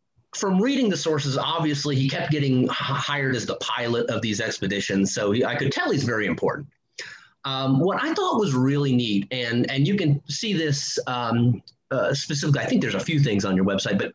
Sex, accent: male, American